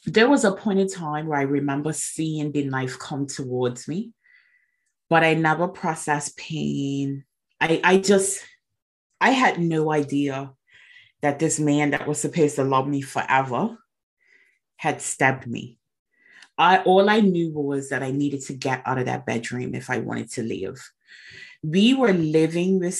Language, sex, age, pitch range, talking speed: English, female, 30-49, 140-175 Hz, 165 wpm